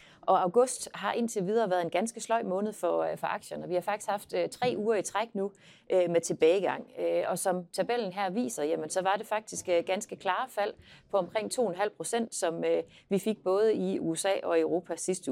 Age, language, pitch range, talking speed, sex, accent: 30-49, Danish, 180-225 Hz, 190 wpm, female, native